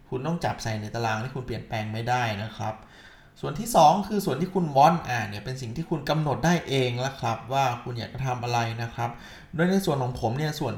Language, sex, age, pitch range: Thai, male, 20-39, 110-155 Hz